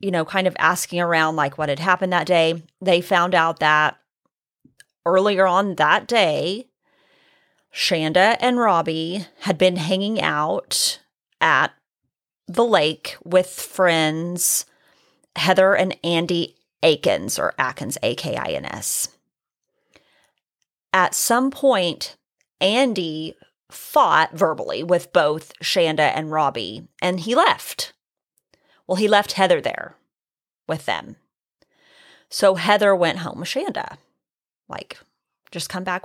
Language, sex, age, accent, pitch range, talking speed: English, female, 30-49, American, 160-195 Hz, 115 wpm